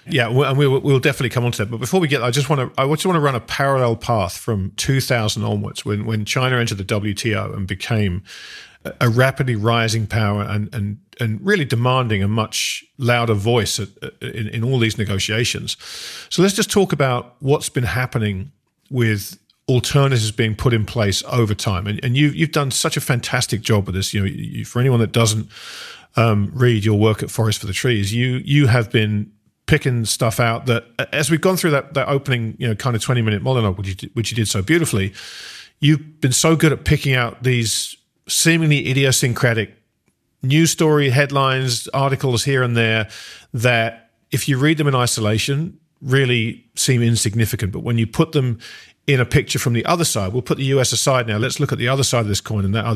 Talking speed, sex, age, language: 205 wpm, male, 40-59, English